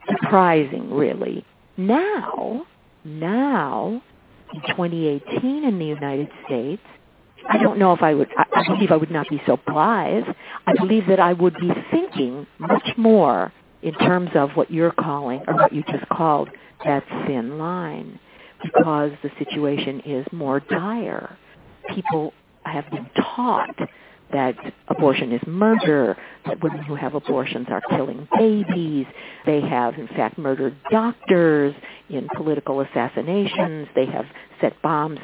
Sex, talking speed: female, 140 wpm